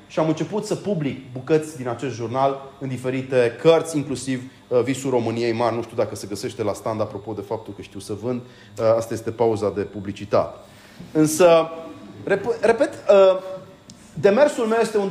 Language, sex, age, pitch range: Romanian, male, 30-49, 135-210 Hz